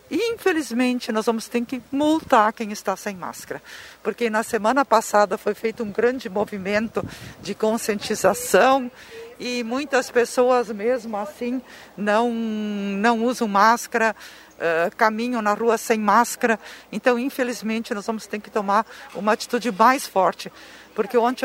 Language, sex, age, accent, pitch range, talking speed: Portuguese, female, 50-69, Brazilian, 210-245 Hz, 135 wpm